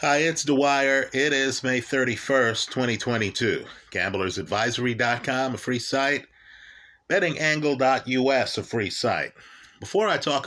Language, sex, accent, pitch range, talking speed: English, male, American, 115-140 Hz, 110 wpm